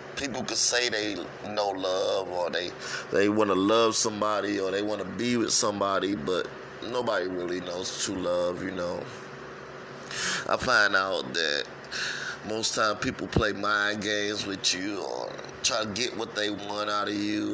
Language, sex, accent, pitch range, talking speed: English, male, American, 100-115 Hz, 170 wpm